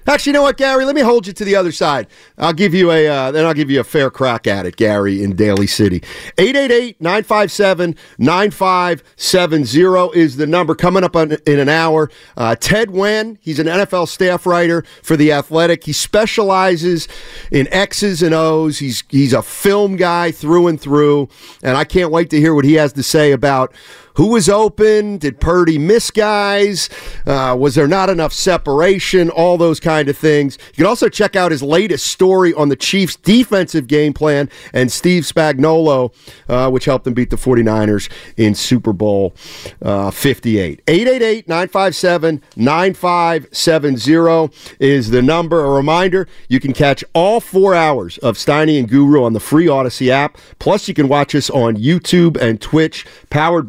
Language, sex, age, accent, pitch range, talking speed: English, male, 50-69, American, 140-185 Hz, 175 wpm